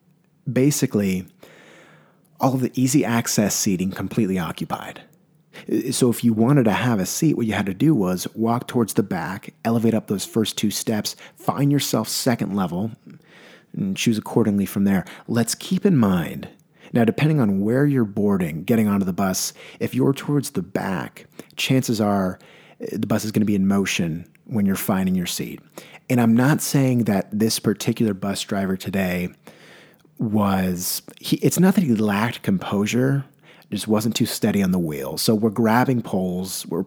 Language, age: English, 30-49